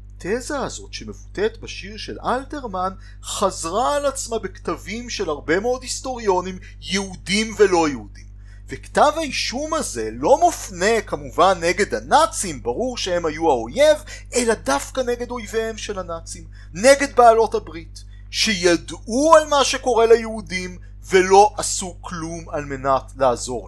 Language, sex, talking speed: Hebrew, male, 125 wpm